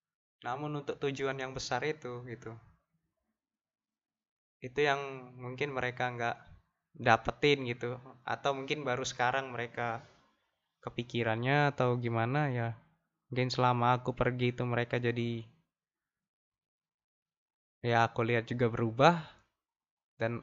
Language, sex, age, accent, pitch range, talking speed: Indonesian, male, 20-39, native, 115-135 Hz, 105 wpm